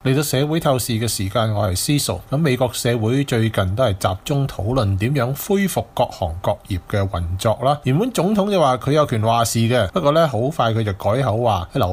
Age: 20-39